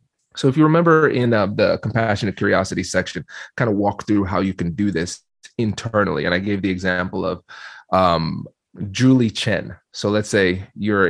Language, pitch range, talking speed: English, 95-115 Hz, 180 wpm